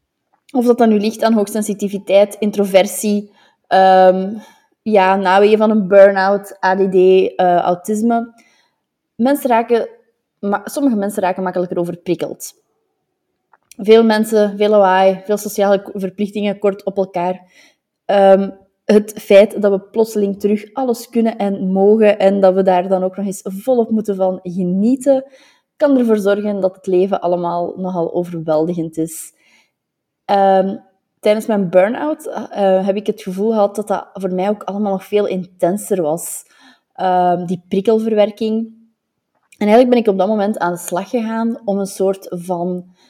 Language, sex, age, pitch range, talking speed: Dutch, female, 20-39, 185-215 Hz, 140 wpm